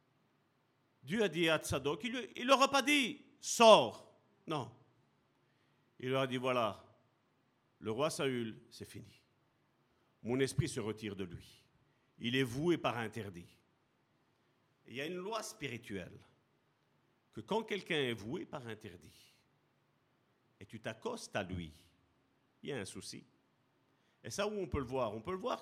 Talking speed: 160 wpm